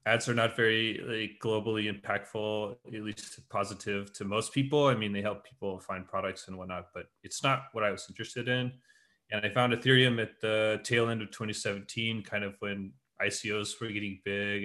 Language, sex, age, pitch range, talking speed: English, male, 30-49, 105-125 Hz, 195 wpm